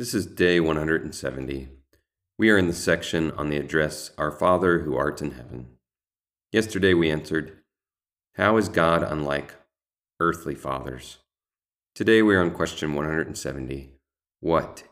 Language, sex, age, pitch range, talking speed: English, male, 30-49, 70-90 Hz, 135 wpm